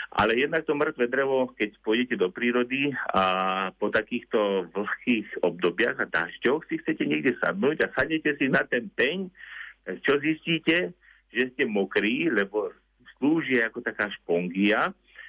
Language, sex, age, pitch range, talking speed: Slovak, male, 50-69, 105-140 Hz, 140 wpm